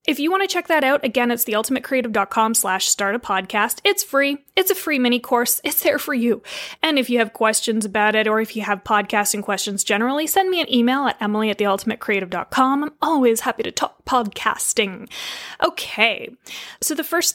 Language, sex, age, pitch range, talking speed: English, female, 20-39, 220-285 Hz, 195 wpm